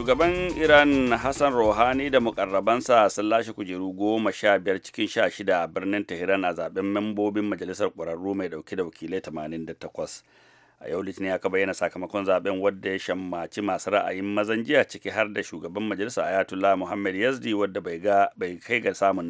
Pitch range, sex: 90-105 Hz, male